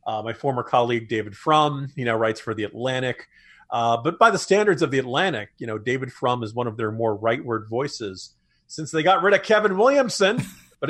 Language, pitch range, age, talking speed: English, 115-155 Hz, 40-59, 215 wpm